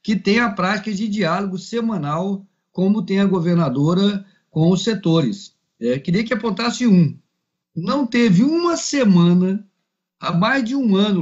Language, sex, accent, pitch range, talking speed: Portuguese, male, Brazilian, 160-230 Hz, 145 wpm